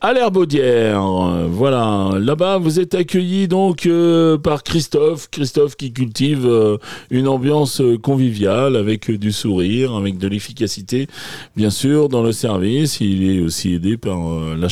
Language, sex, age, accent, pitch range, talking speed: French, male, 40-59, French, 105-155 Hz, 150 wpm